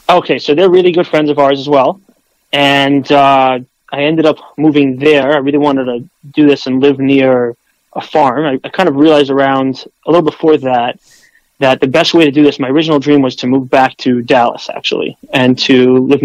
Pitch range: 130-150 Hz